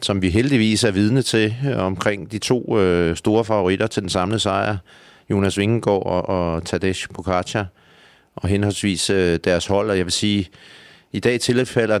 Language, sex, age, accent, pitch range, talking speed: Danish, male, 40-59, native, 90-110 Hz, 170 wpm